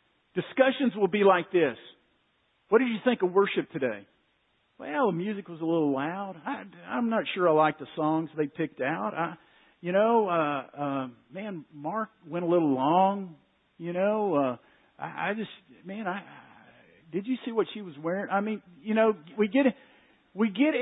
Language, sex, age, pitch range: English, male, 50-69, 190-265 Hz